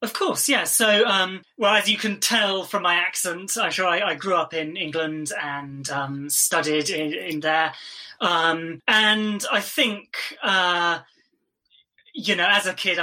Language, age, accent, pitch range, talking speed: English, 20-39, British, 155-205 Hz, 165 wpm